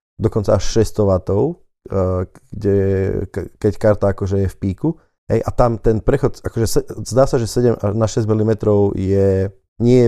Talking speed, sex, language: 160 wpm, male, Slovak